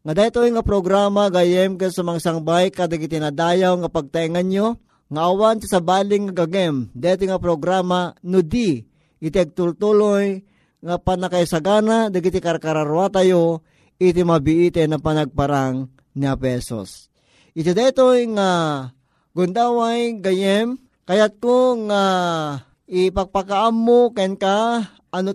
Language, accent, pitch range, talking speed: Filipino, native, 170-200 Hz, 115 wpm